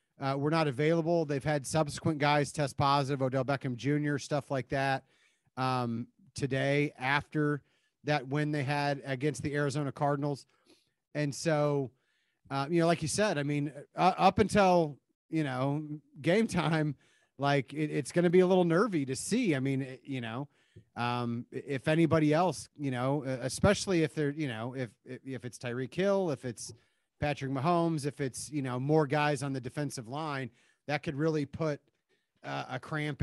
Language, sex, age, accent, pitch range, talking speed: English, male, 30-49, American, 130-155 Hz, 175 wpm